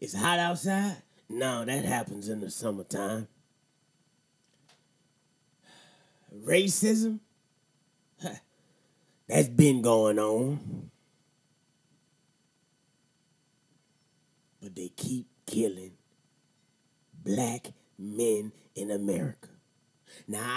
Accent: American